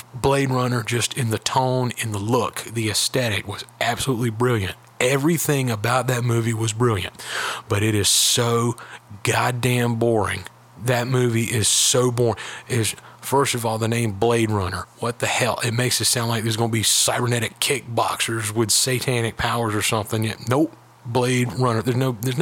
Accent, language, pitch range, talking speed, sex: American, English, 115-130 Hz, 170 wpm, male